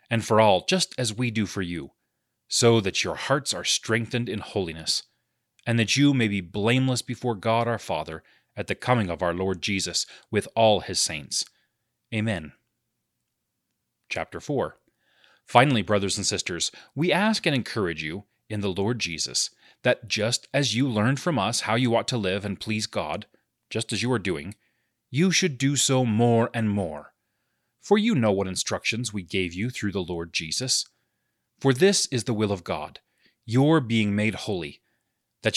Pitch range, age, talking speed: 100-125 Hz, 30-49, 175 wpm